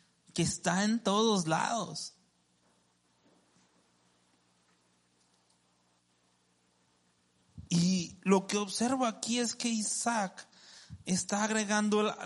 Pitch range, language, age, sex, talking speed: 160-220 Hz, Spanish, 30-49, male, 75 wpm